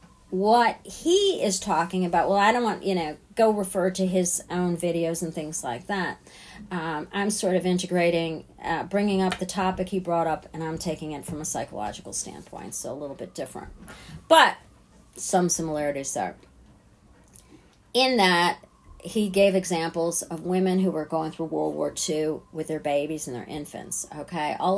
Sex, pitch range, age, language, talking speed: female, 170-215 Hz, 40-59, English, 175 wpm